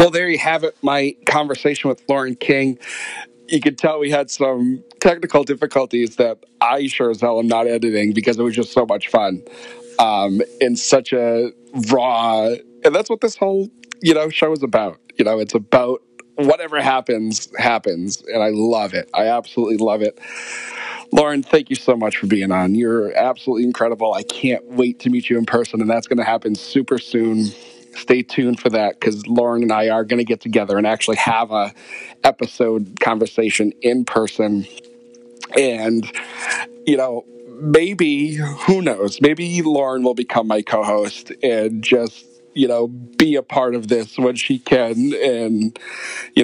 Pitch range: 115-145 Hz